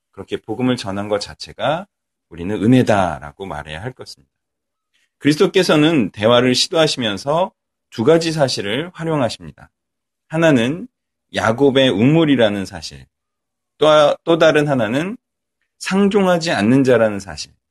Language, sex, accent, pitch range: Korean, male, native, 100-135 Hz